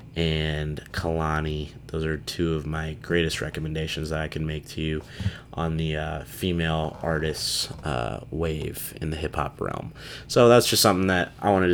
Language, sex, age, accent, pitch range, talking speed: English, male, 20-39, American, 80-105 Hz, 170 wpm